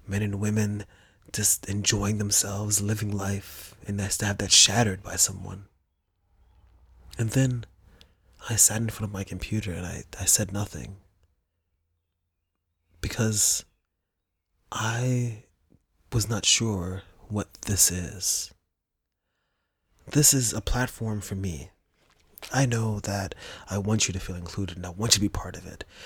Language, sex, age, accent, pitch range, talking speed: English, male, 20-39, American, 90-110 Hz, 145 wpm